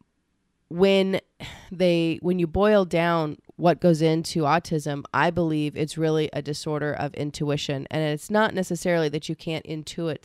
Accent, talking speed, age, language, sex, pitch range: American, 150 wpm, 30-49, English, female, 145-165 Hz